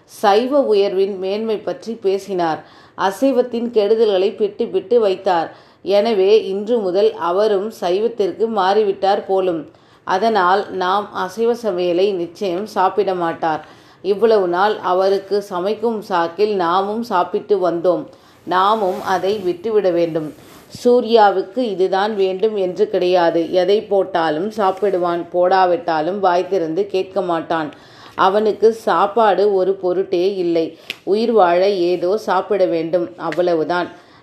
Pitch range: 180-210 Hz